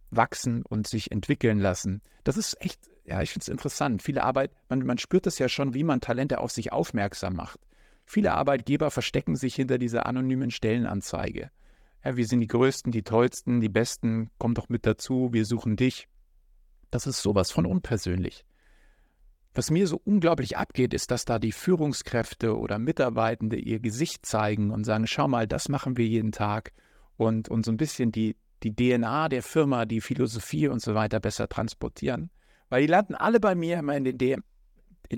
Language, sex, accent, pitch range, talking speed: German, male, German, 110-130 Hz, 180 wpm